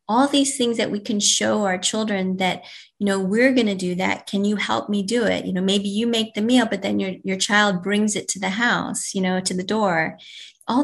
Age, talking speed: 30-49, 255 wpm